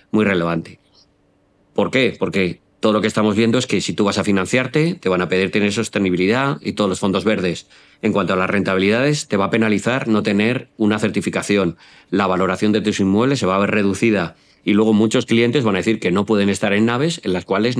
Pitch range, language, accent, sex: 100-115 Hz, English, Spanish, male